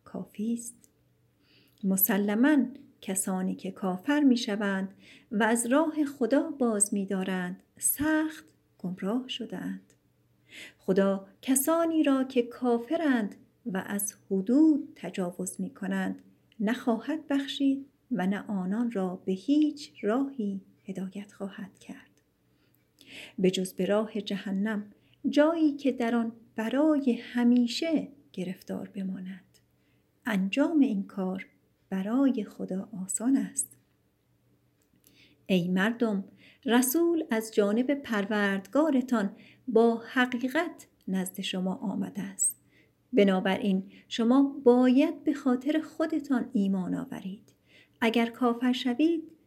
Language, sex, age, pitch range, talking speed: Persian, female, 50-69, 195-265 Hz, 95 wpm